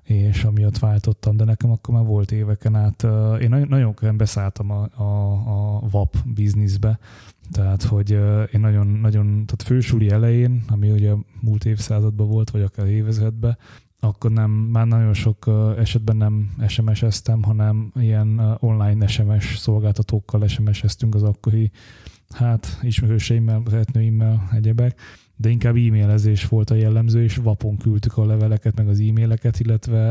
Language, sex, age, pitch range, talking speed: Hungarian, male, 20-39, 105-115 Hz, 145 wpm